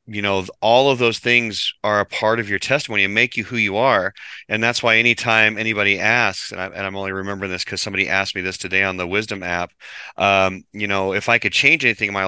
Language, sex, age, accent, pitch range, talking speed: English, male, 30-49, American, 95-110 Hz, 245 wpm